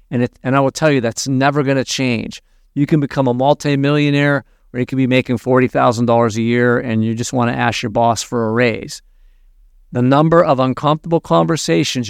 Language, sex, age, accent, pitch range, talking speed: English, male, 50-69, American, 115-145 Hz, 205 wpm